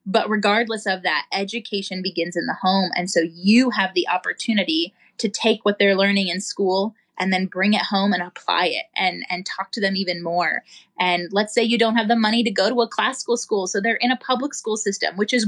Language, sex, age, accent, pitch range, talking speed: English, female, 20-39, American, 185-230 Hz, 235 wpm